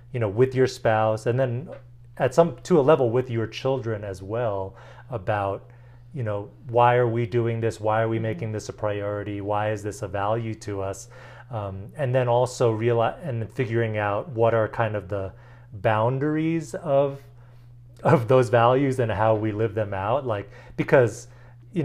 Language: English